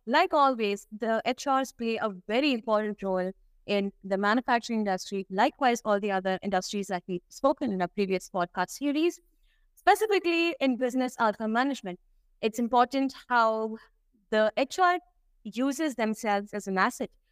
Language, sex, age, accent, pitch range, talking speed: English, female, 20-39, Indian, 205-275 Hz, 140 wpm